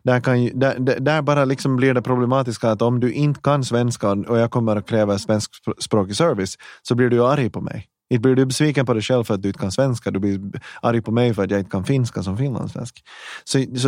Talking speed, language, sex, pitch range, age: 235 wpm, Finnish, male, 105-130 Hz, 30-49